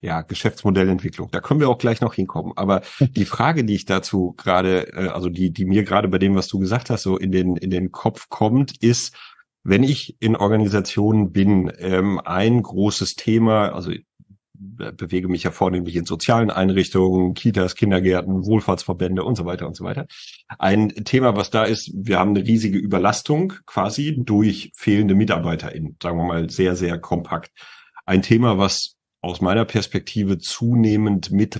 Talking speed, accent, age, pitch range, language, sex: 170 wpm, German, 40-59, 95-115 Hz, German, male